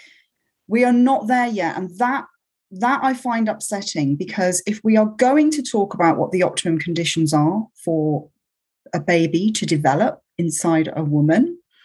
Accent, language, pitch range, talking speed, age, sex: British, English, 160-220 Hz, 160 wpm, 30-49, female